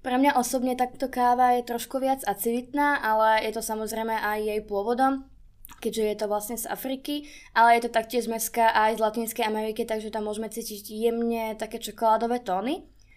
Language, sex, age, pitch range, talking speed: Czech, female, 20-39, 215-245 Hz, 180 wpm